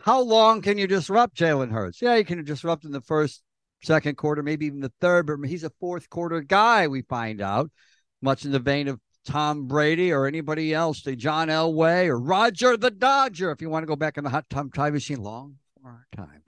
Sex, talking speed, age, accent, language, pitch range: male, 220 wpm, 60-79, American, English, 125-160 Hz